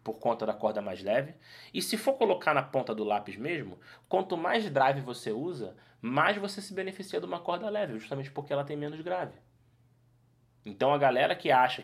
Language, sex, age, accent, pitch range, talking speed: Portuguese, male, 20-39, Brazilian, 110-145 Hz, 200 wpm